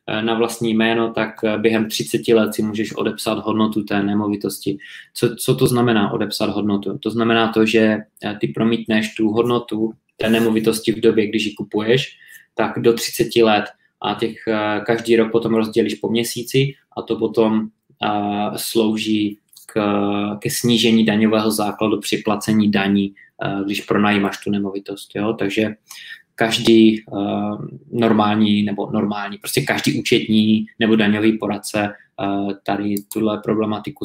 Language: Czech